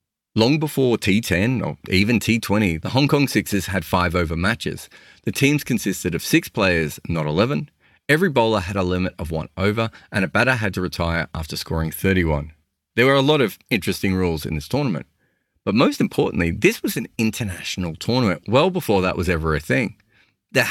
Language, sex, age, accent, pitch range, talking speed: English, male, 30-49, Australian, 90-120 Hz, 190 wpm